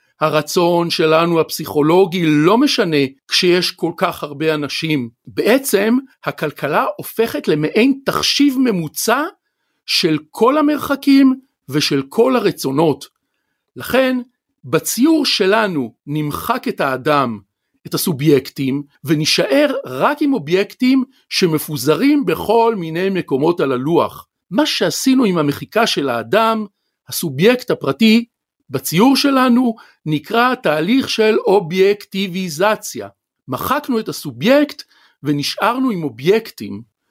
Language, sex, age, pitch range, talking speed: Hebrew, male, 50-69, 150-245 Hz, 95 wpm